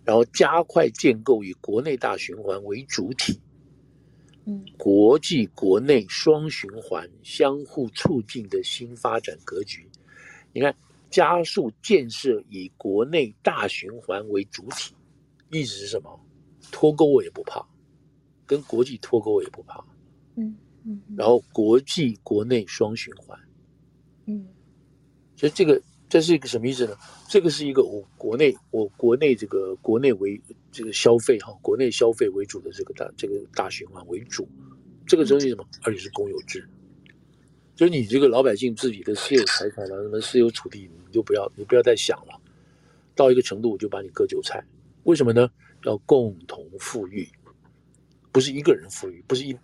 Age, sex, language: 60-79, male, Chinese